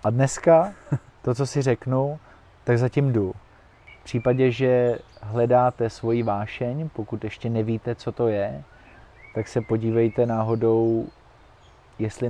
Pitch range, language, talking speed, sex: 115-125 Hz, Slovak, 125 wpm, male